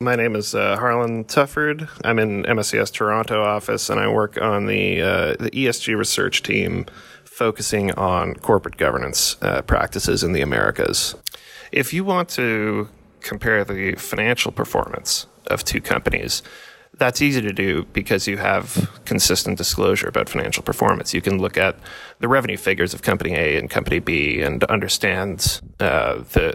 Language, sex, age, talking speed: English, male, 30-49, 160 wpm